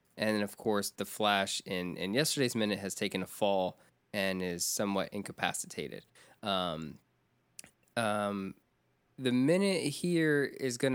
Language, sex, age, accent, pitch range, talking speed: English, male, 20-39, American, 105-130 Hz, 130 wpm